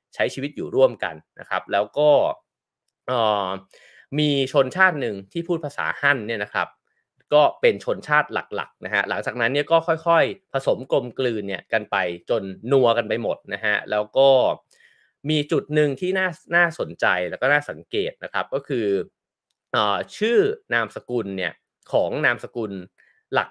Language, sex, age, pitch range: English, male, 20-39, 110-175 Hz